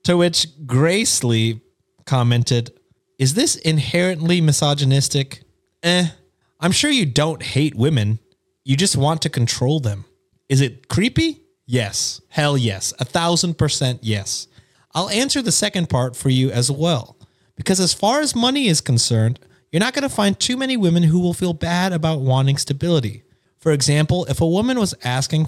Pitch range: 120-160 Hz